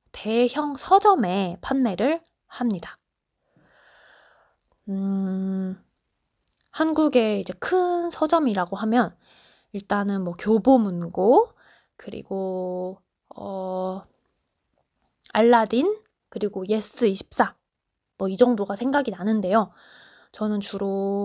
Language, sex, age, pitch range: Korean, female, 20-39, 195-260 Hz